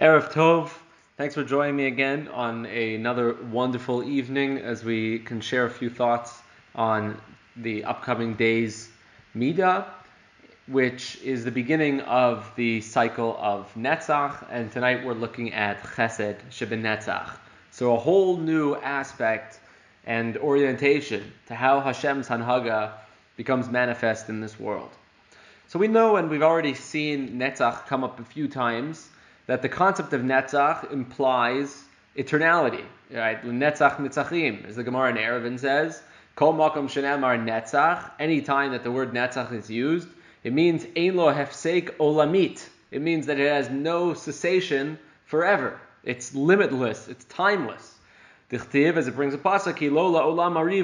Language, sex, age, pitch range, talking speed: English, male, 20-39, 120-150 Hz, 130 wpm